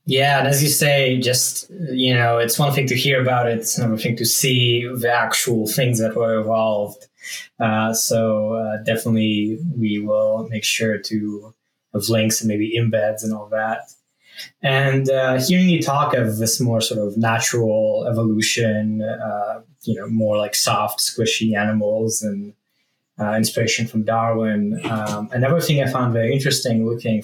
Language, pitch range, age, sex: English, 110-125 Hz, 20-39, male